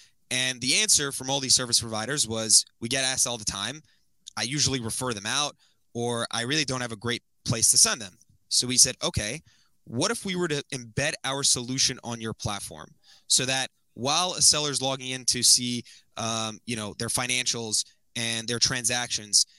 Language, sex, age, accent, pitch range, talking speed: English, male, 20-39, American, 115-140 Hz, 195 wpm